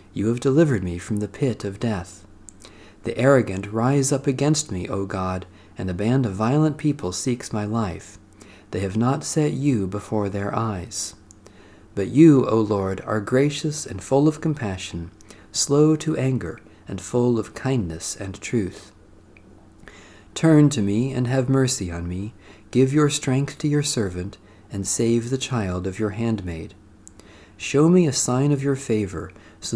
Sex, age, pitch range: male, 50-69, 100-135 Hz